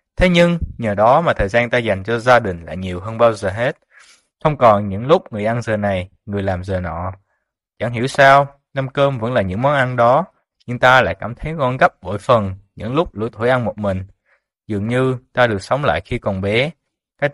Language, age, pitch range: Vietnamese, 20-39, 105-130 Hz